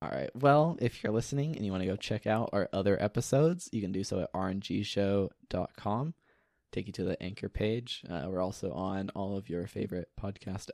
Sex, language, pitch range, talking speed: male, English, 95-120 Hz, 205 wpm